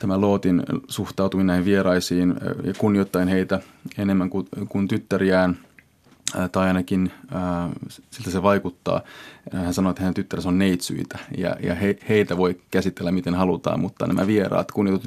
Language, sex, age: Finnish, male, 30-49